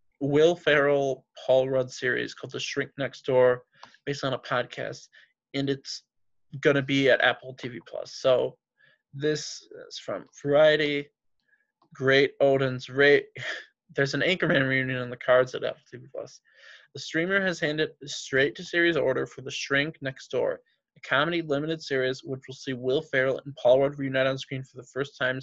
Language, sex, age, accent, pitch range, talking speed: English, male, 20-39, American, 130-150 Hz, 175 wpm